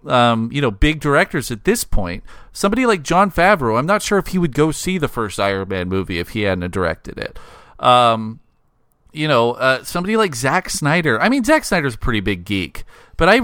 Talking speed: 215 wpm